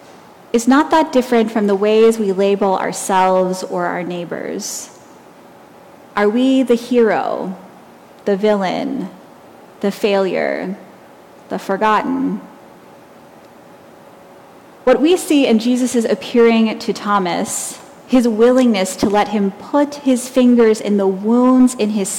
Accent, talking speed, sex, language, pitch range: American, 120 wpm, female, English, 200-255 Hz